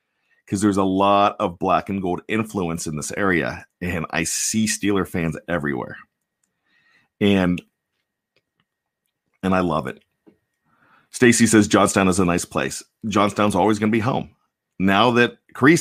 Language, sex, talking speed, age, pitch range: English, male, 150 wpm, 40-59, 95-120 Hz